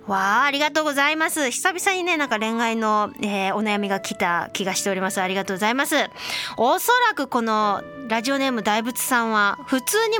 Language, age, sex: Japanese, 20-39, female